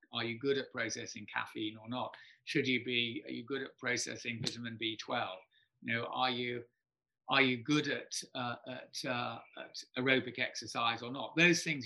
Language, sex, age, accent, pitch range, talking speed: English, male, 40-59, British, 120-145 Hz, 180 wpm